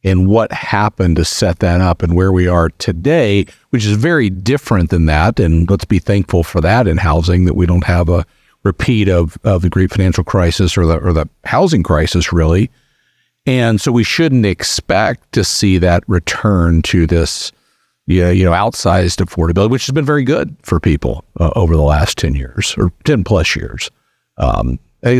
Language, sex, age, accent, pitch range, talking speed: English, male, 50-69, American, 85-110 Hz, 185 wpm